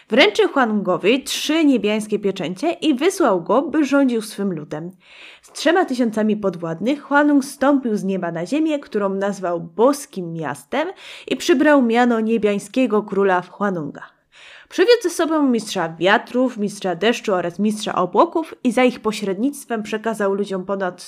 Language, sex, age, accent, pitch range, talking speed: Polish, female, 20-39, native, 190-270 Hz, 140 wpm